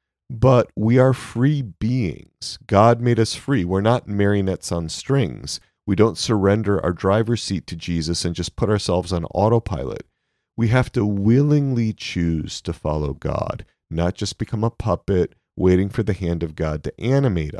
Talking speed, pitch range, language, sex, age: 165 wpm, 90-120 Hz, English, male, 30-49